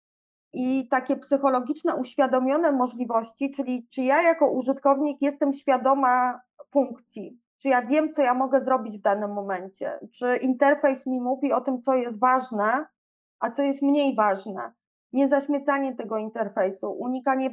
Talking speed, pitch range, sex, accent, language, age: 145 wpm, 235-275 Hz, female, native, Polish, 20-39